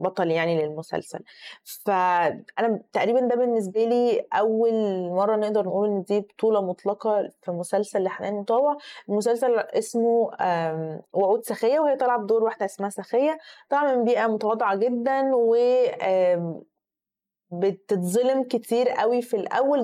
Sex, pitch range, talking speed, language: female, 190-245 Hz, 125 wpm, Arabic